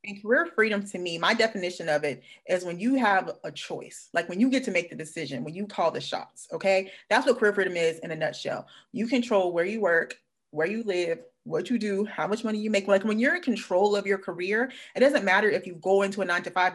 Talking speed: 260 wpm